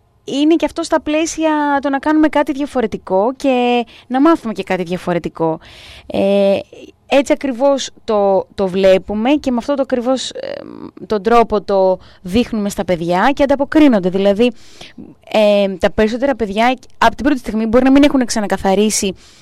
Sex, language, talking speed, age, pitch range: female, Greek, 150 wpm, 20-39, 205-280 Hz